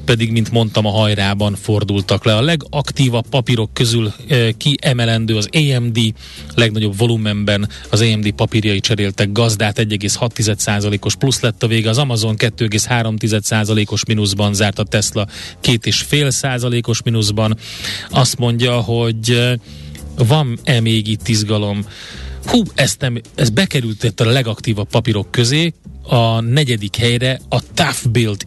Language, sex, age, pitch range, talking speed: Hungarian, male, 30-49, 105-125 Hz, 125 wpm